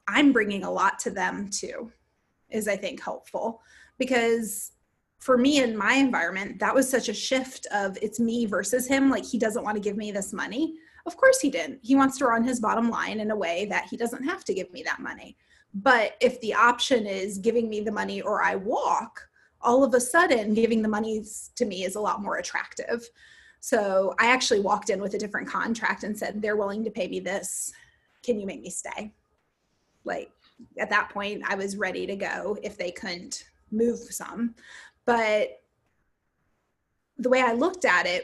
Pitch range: 210-260 Hz